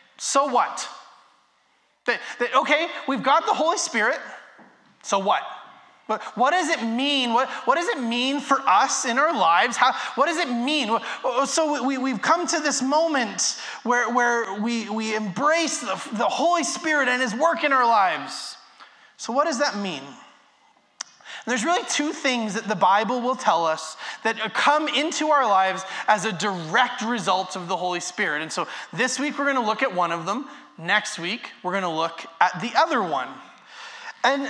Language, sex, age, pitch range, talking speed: English, male, 20-39, 215-285 Hz, 175 wpm